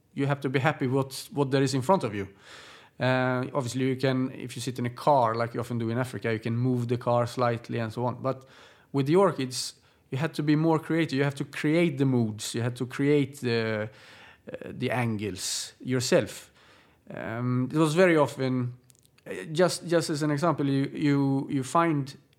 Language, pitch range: English, 120-150 Hz